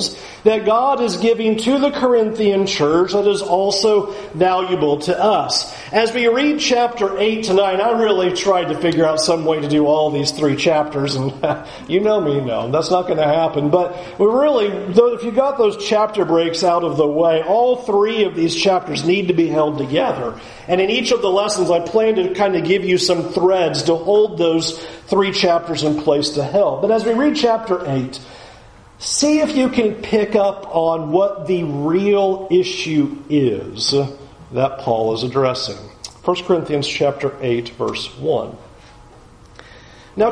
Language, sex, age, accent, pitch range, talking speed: English, male, 40-59, American, 160-215 Hz, 180 wpm